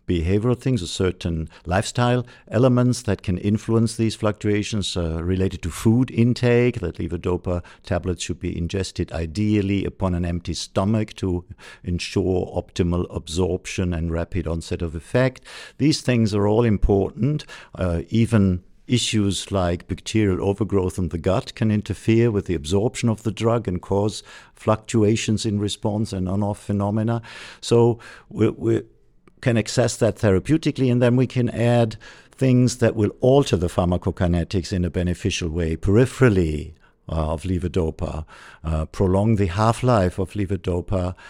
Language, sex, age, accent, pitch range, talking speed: English, male, 50-69, German, 90-110 Hz, 140 wpm